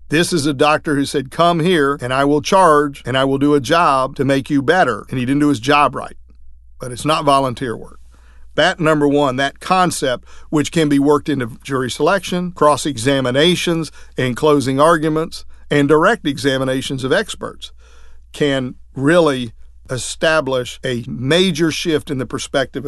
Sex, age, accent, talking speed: male, 50-69, American, 170 wpm